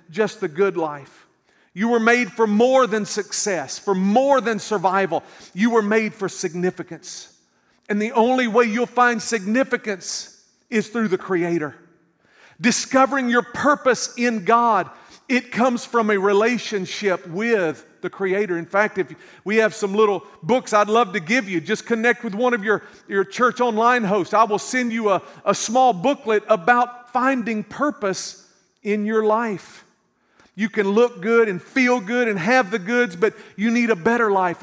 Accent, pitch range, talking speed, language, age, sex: American, 175-240 Hz, 170 wpm, English, 40-59, male